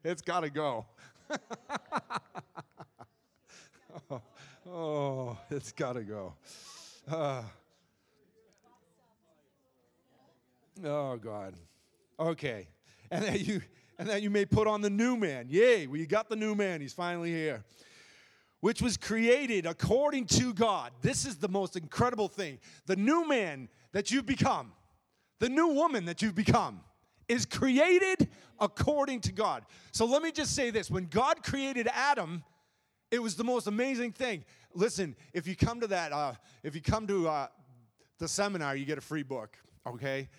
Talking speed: 145 wpm